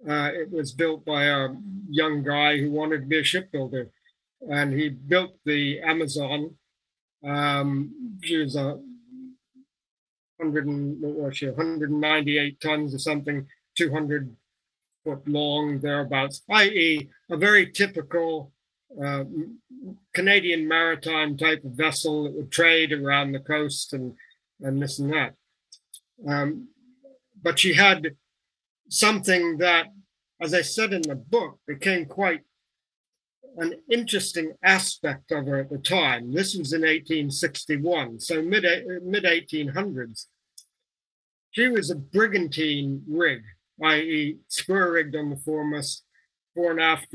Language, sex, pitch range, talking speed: English, male, 145-180 Hz, 125 wpm